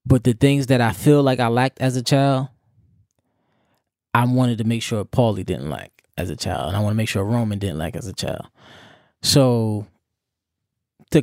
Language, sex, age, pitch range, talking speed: English, male, 20-39, 110-130 Hz, 200 wpm